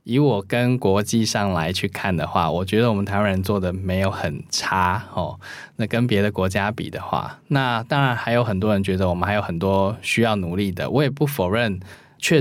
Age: 20-39